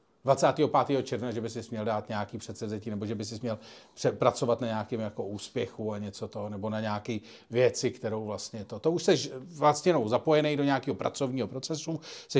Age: 40-59